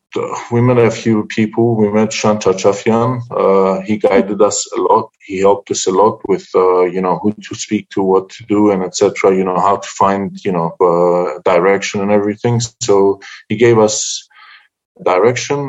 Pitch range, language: 95-120 Hz, English